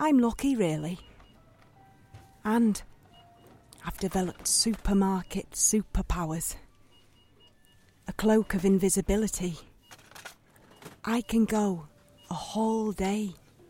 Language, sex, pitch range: English, female, 120-195 Hz